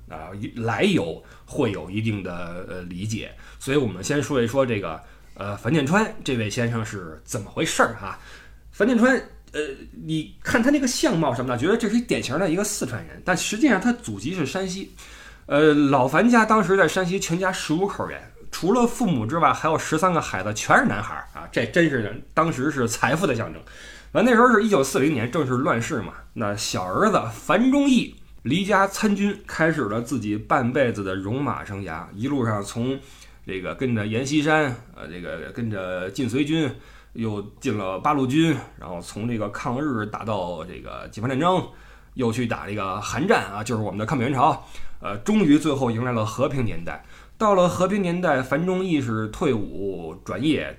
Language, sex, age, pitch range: Chinese, male, 20-39, 105-180 Hz